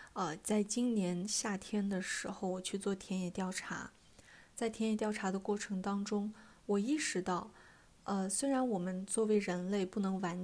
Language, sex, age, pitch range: Chinese, female, 20-39, 185-220 Hz